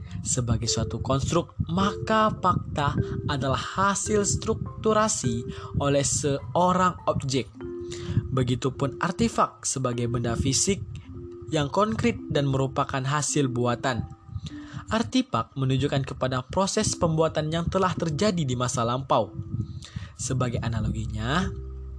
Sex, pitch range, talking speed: male, 120-170 Hz, 95 wpm